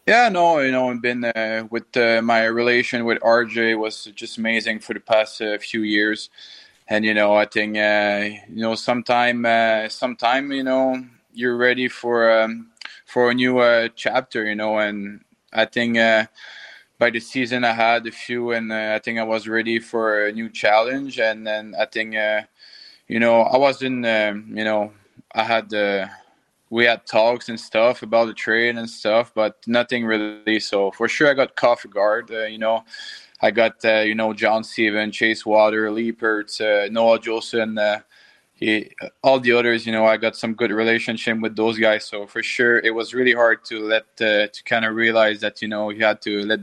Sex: male